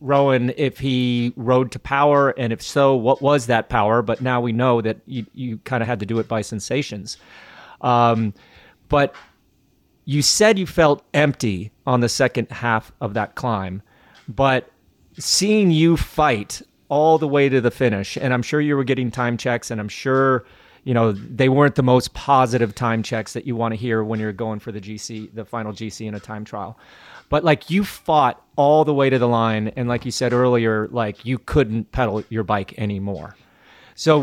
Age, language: 30-49, English